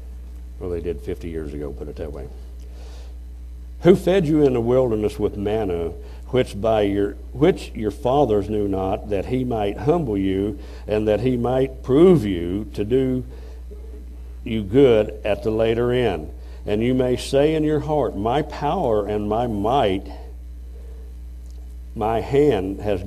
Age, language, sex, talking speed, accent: 60-79, English, male, 155 wpm, American